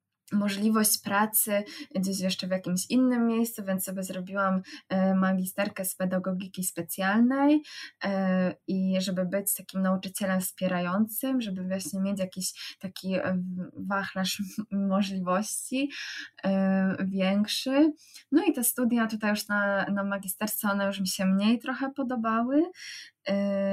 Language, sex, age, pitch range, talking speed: Polish, female, 20-39, 185-210 Hz, 115 wpm